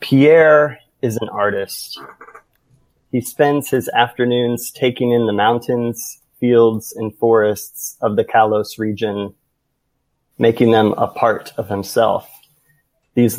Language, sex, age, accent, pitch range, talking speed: English, male, 30-49, American, 115-130 Hz, 115 wpm